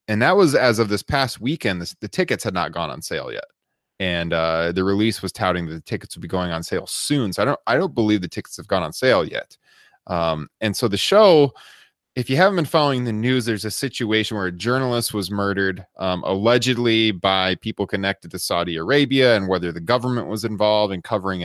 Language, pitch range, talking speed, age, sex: English, 95-125 Hz, 225 wpm, 20-39, male